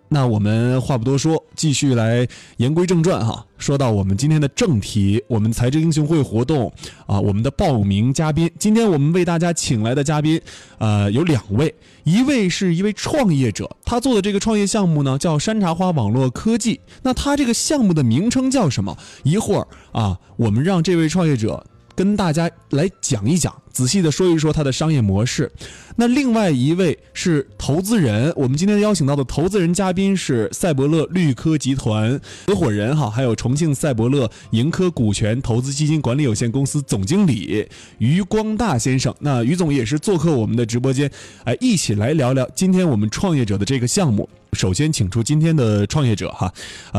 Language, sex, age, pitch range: Chinese, male, 20-39, 115-175 Hz